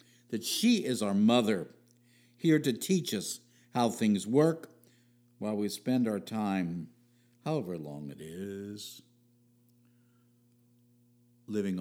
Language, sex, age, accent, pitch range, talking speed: English, male, 60-79, American, 105-120 Hz, 110 wpm